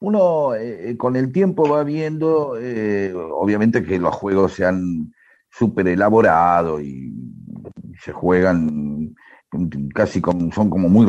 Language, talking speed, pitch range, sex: Spanish, 130 wpm, 115-175 Hz, male